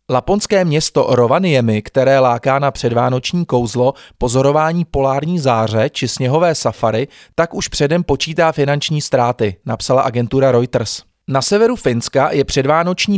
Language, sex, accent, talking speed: Czech, male, native, 130 wpm